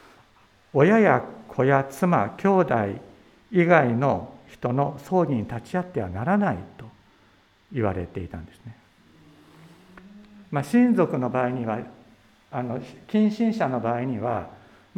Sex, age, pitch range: male, 60-79, 110-155 Hz